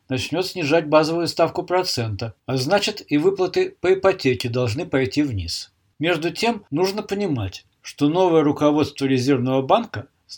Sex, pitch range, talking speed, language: male, 125-165 Hz, 140 wpm, Russian